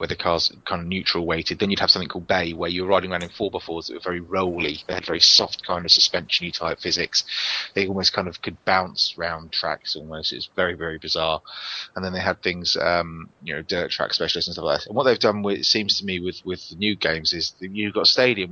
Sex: male